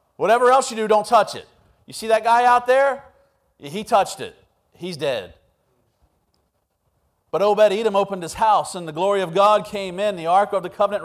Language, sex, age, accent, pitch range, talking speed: English, male, 40-59, American, 145-220 Hz, 190 wpm